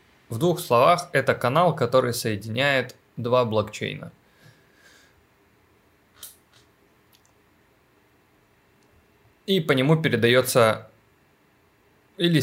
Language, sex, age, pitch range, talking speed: Russian, male, 20-39, 105-130 Hz, 70 wpm